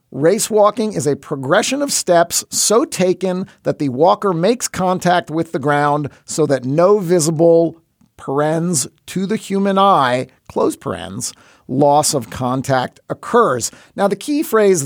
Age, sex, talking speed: 50-69, male, 145 wpm